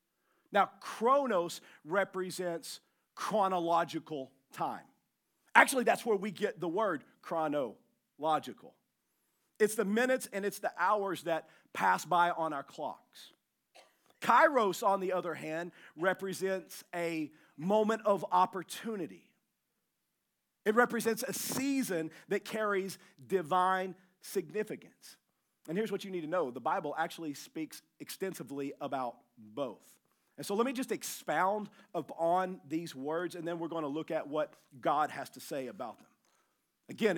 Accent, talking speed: American, 130 wpm